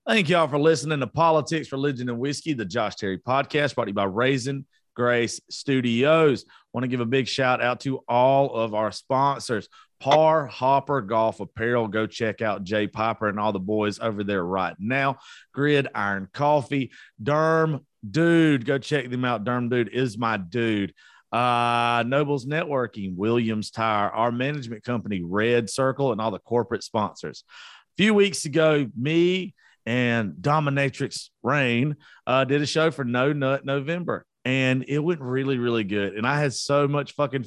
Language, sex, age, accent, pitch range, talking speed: English, male, 40-59, American, 110-140 Hz, 170 wpm